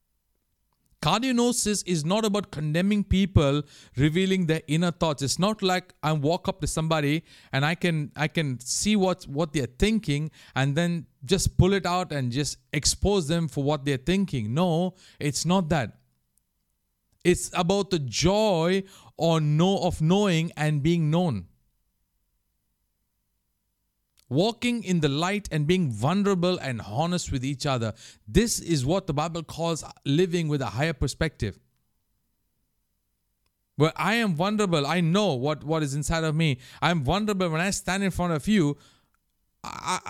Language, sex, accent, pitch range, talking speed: English, male, Indian, 130-185 Hz, 150 wpm